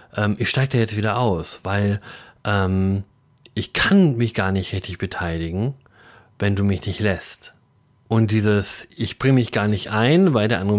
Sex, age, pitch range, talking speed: male, 30-49, 100-130 Hz, 175 wpm